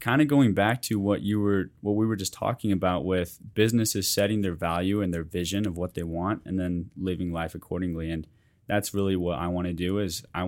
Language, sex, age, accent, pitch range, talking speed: English, male, 20-39, American, 85-100 Hz, 235 wpm